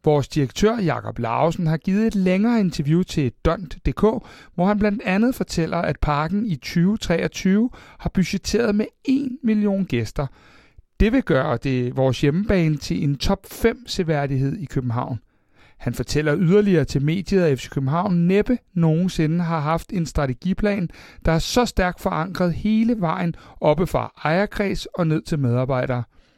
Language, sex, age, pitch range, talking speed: Danish, male, 60-79, 145-195 Hz, 155 wpm